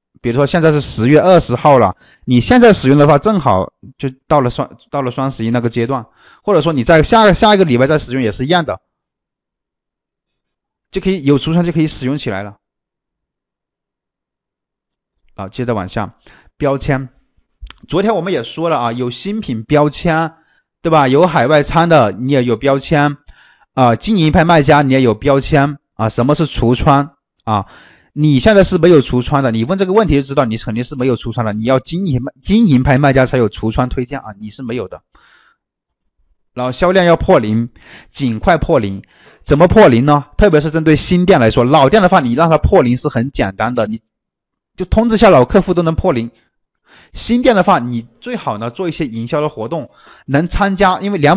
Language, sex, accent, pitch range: Chinese, male, native, 120-165 Hz